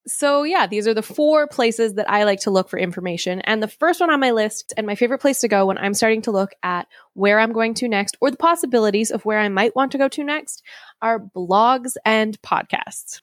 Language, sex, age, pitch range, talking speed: English, female, 20-39, 195-255 Hz, 245 wpm